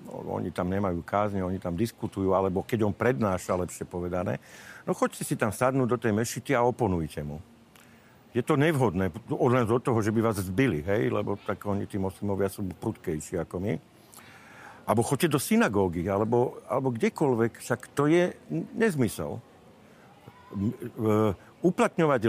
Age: 50-69